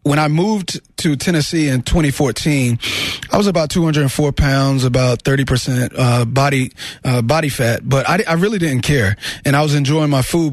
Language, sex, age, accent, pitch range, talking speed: English, male, 30-49, American, 125-150 Hz, 175 wpm